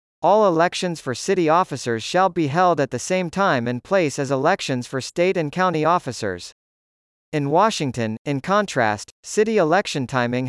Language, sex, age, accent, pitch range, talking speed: English, male, 50-69, American, 125-185 Hz, 160 wpm